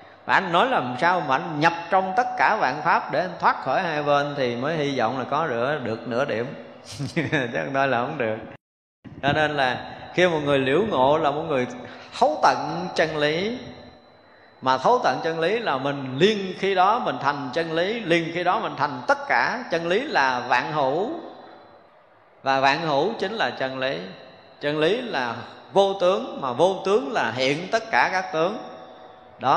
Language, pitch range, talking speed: Vietnamese, 125-170 Hz, 195 wpm